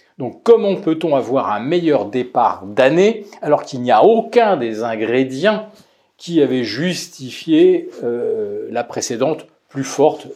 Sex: male